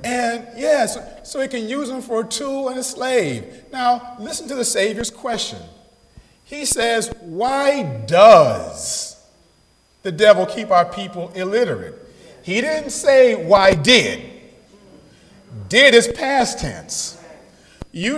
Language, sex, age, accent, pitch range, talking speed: English, male, 40-59, American, 215-275 Hz, 130 wpm